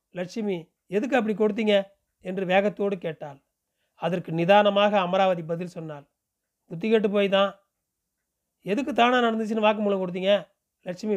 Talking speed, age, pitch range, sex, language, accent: 105 wpm, 40-59, 170-210 Hz, male, Tamil, native